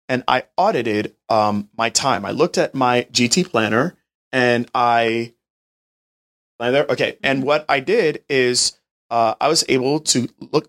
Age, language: 30-49, English